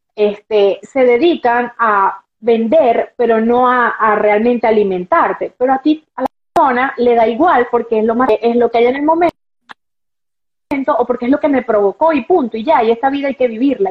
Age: 20-39